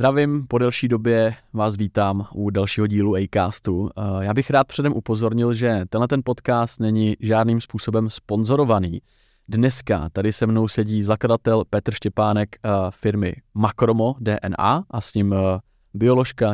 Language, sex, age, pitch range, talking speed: Czech, male, 20-39, 100-120 Hz, 140 wpm